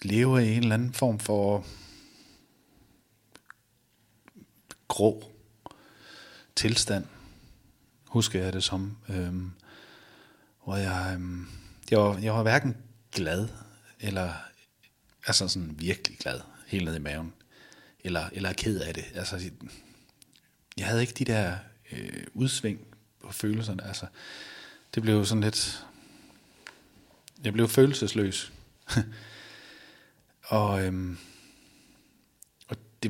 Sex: male